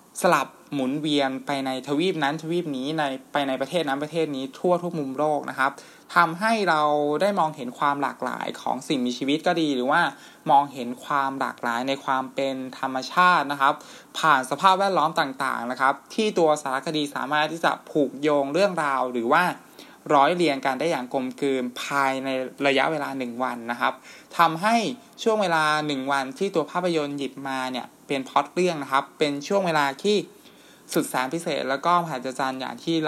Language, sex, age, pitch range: Thai, male, 20-39, 135-165 Hz